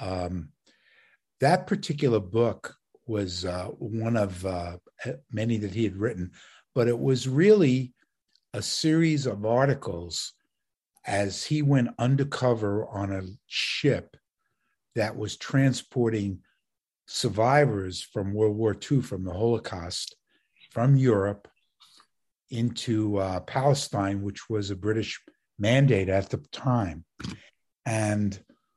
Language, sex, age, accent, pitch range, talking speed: English, male, 50-69, American, 100-125 Hz, 115 wpm